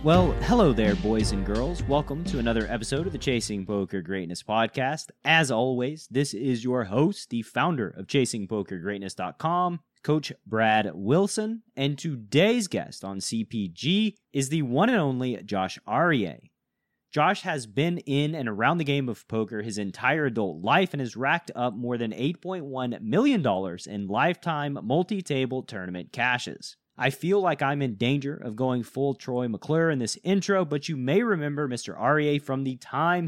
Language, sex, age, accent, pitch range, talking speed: English, male, 30-49, American, 110-160 Hz, 165 wpm